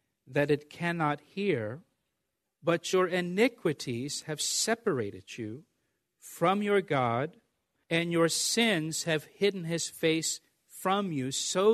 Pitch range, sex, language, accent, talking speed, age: 135-180 Hz, male, English, American, 120 wpm, 50-69